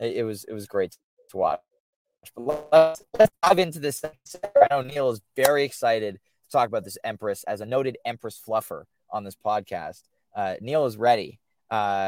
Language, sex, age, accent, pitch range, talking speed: English, male, 20-39, American, 110-145 Hz, 180 wpm